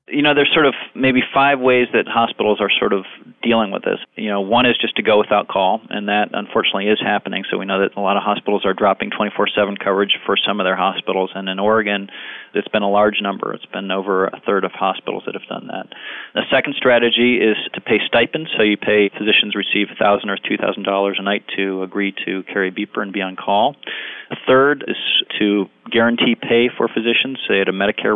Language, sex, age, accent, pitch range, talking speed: English, male, 40-59, American, 100-120 Hz, 220 wpm